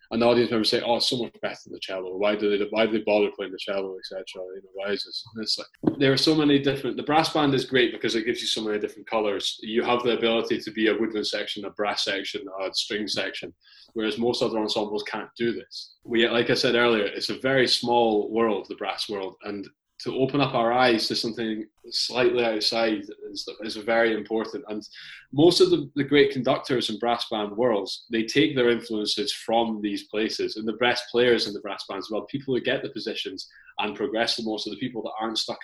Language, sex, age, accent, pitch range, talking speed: English, male, 20-39, British, 110-130 Hz, 240 wpm